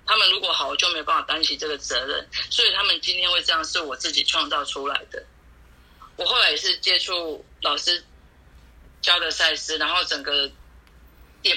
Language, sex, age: Chinese, female, 30-49